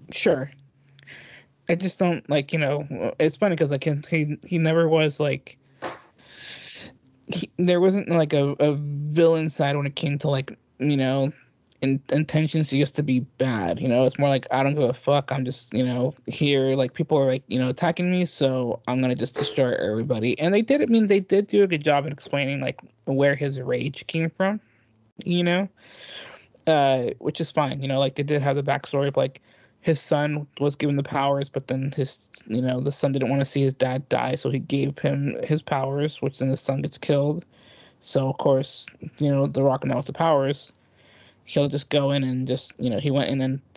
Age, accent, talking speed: 20-39, American, 210 wpm